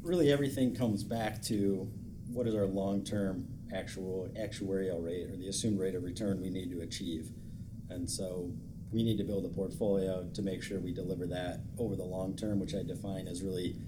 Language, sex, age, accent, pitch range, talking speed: English, male, 40-59, American, 95-115 Hz, 195 wpm